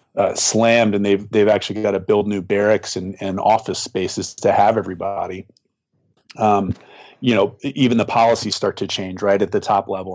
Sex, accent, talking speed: male, American, 190 wpm